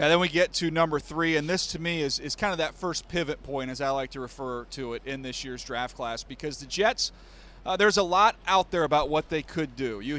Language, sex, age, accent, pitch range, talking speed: English, male, 30-49, American, 140-170 Hz, 270 wpm